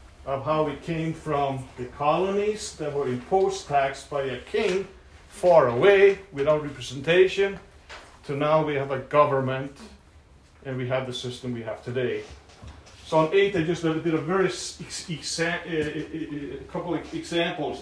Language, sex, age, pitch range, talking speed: English, male, 40-59, 120-160 Hz, 170 wpm